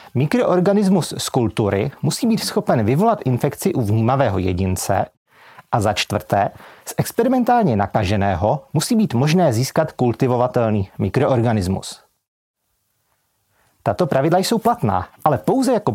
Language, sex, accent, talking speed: Czech, male, native, 115 wpm